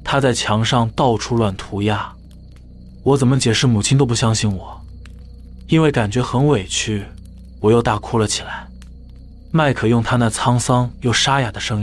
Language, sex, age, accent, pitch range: Chinese, male, 20-39, native, 90-125 Hz